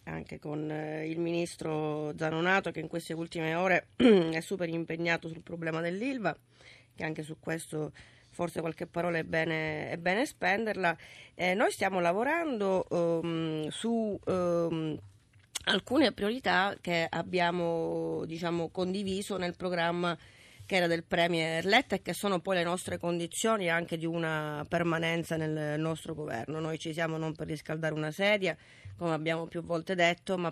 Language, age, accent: Italian, 30-49, native